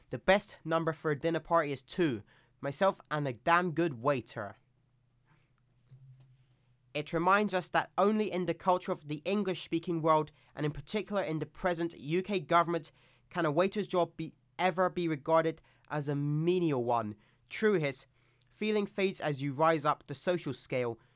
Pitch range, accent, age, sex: 125-175 Hz, British, 20-39, male